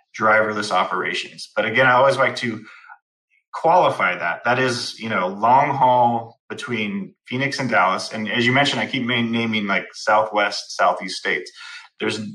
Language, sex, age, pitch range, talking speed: English, male, 30-49, 110-130 Hz, 155 wpm